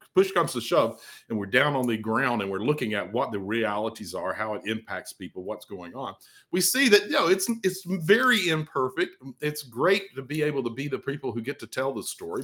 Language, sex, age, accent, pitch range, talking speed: English, male, 50-69, American, 105-155 Hz, 235 wpm